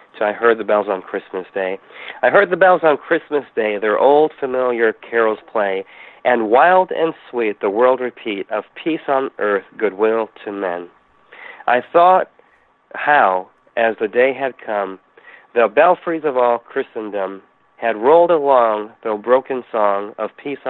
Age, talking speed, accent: 40-59, 155 wpm, American